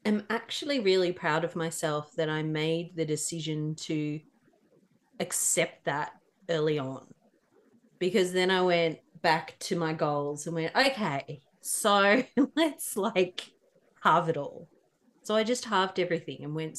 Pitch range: 160-230 Hz